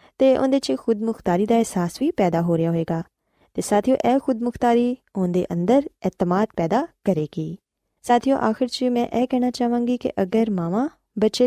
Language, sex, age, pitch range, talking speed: Punjabi, female, 20-39, 180-245 Hz, 195 wpm